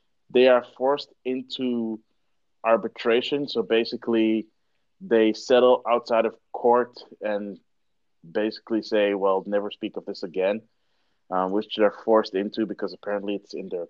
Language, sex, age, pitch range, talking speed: English, male, 30-49, 100-125 Hz, 140 wpm